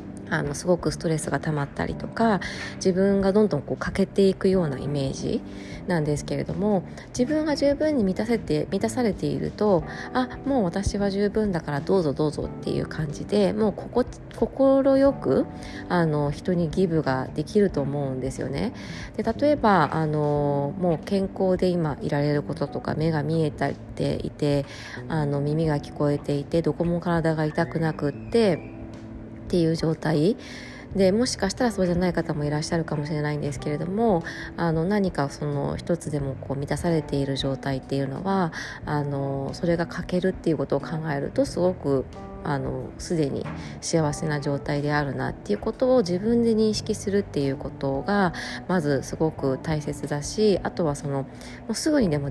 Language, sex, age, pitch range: Japanese, female, 20-39, 145-195 Hz